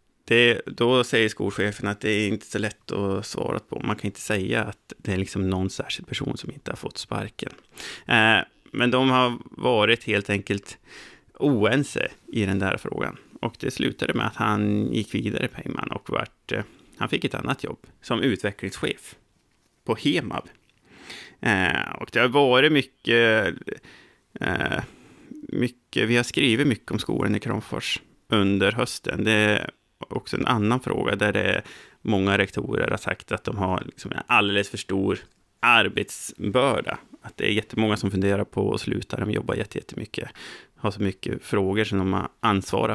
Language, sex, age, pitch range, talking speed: Swedish, male, 30-49, 100-120 Hz, 165 wpm